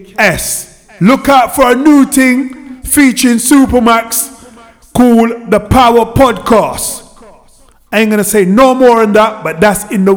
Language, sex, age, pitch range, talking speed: English, male, 30-49, 190-240 Hz, 150 wpm